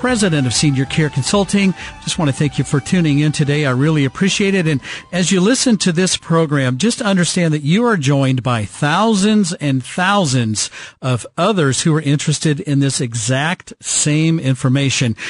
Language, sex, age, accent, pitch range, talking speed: English, male, 50-69, American, 135-175 Hz, 175 wpm